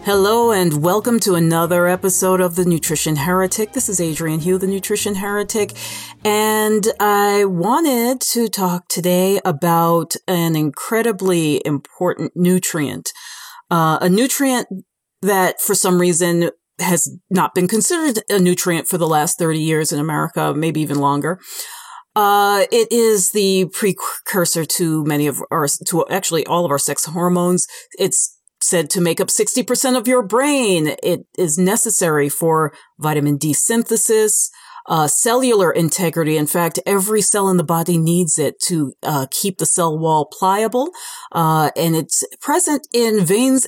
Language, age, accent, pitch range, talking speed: English, 40-59, American, 165-215 Hz, 150 wpm